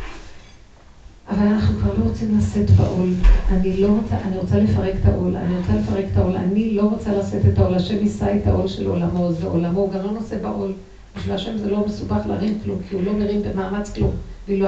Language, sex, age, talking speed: Hebrew, female, 50-69, 145 wpm